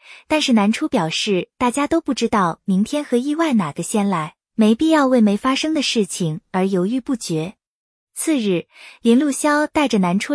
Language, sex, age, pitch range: Chinese, female, 20-39, 200-280 Hz